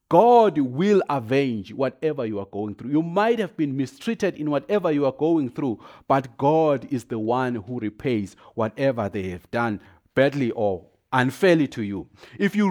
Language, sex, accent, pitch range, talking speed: English, male, South African, 120-185 Hz, 175 wpm